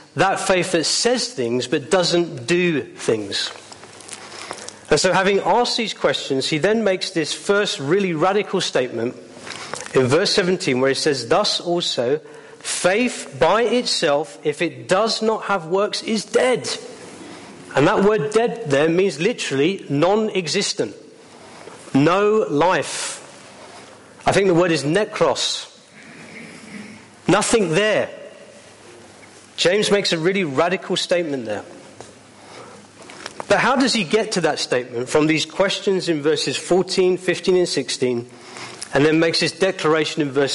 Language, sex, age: English, male, 40-59